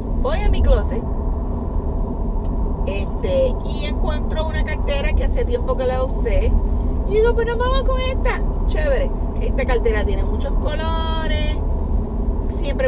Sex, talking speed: female, 135 wpm